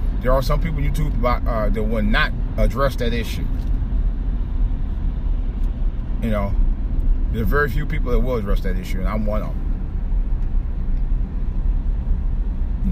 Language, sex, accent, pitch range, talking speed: English, male, American, 70-105 Hz, 150 wpm